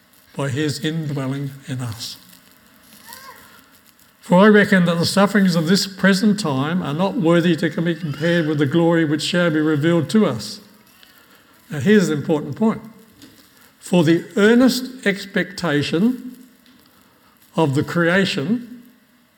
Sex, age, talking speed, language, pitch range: male, 60-79, 130 wpm, English, 155-225 Hz